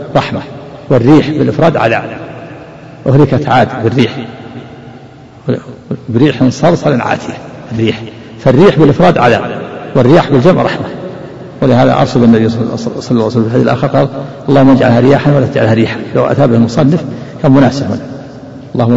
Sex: male